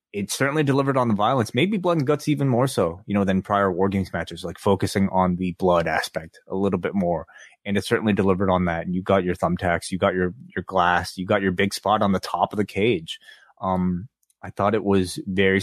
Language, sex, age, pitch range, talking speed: English, male, 20-39, 95-125 Hz, 240 wpm